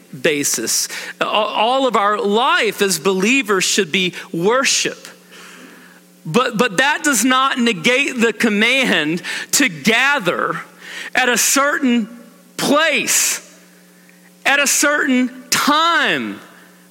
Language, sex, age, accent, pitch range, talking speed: English, male, 40-59, American, 200-270 Hz, 100 wpm